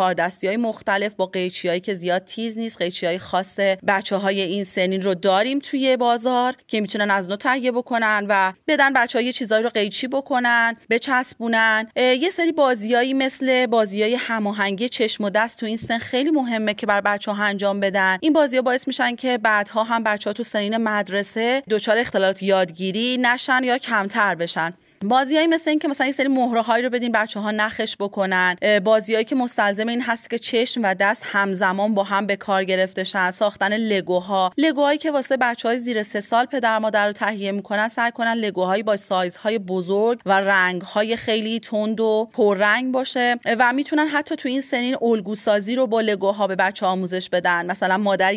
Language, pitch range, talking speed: Persian, 195-245 Hz, 185 wpm